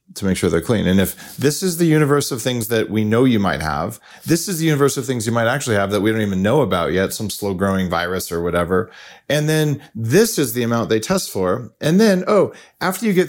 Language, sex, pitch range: English, male, 95-135 Hz